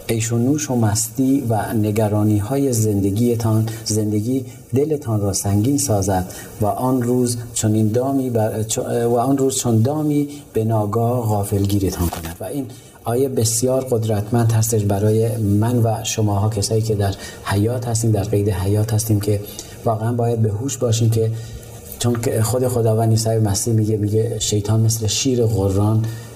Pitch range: 100-115 Hz